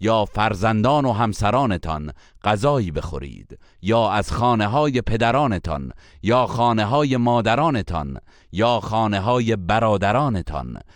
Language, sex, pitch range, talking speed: Persian, male, 95-125 Hz, 105 wpm